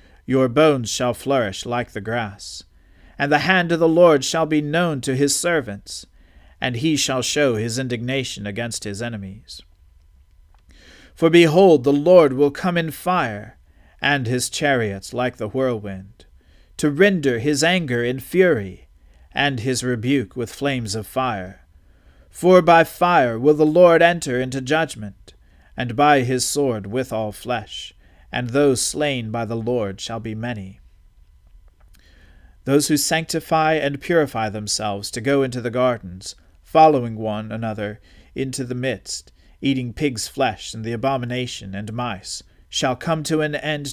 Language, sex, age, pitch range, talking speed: English, male, 40-59, 100-145 Hz, 150 wpm